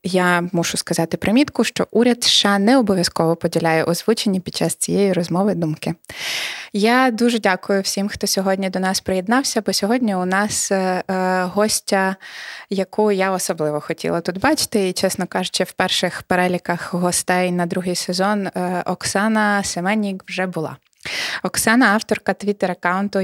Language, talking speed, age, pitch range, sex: Ukrainian, 140 wpm, 20-39, 175-205 Hz, female